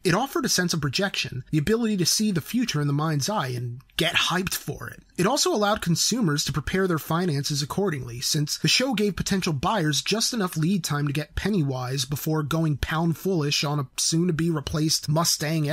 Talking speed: 195 wpm